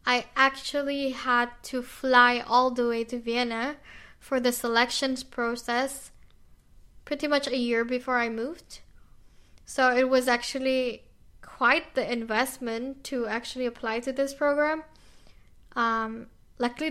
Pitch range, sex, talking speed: 235-270 Hz, female, 130 wpm